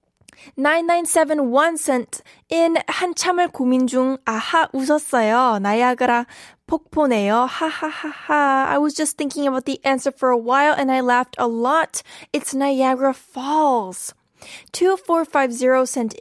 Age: 10-29